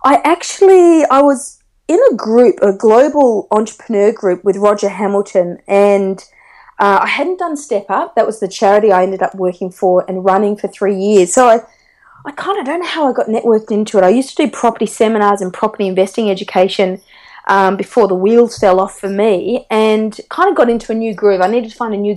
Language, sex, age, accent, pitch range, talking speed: English, female, 30-49, Australian, 195-260 Hz, 215 wpm